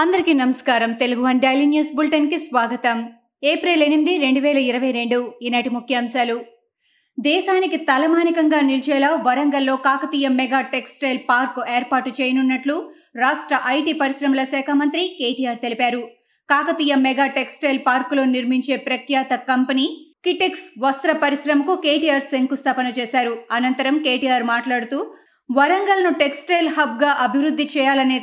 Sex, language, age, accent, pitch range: female, Telugu, 20-39, native, 255-300 Hz